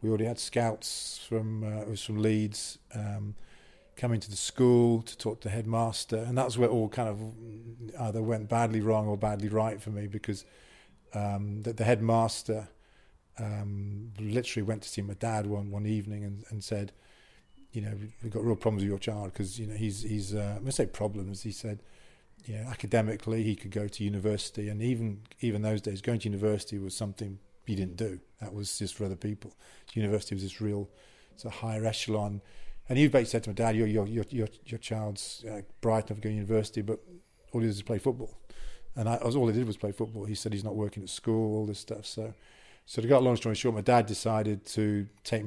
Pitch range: 105-115 Hz